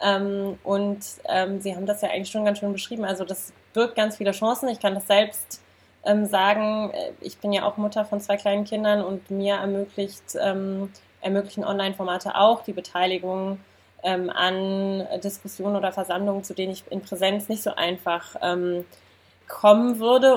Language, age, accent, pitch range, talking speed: German, 20-39, German, 185-210 Hz, 170 wpm